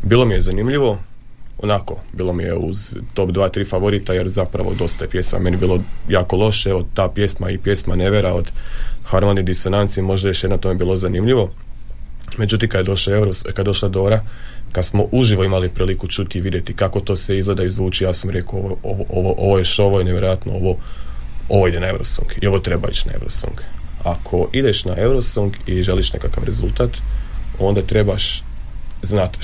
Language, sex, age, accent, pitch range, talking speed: Croatian, male, 30-49, native, 90-105 Hz, 190 wpm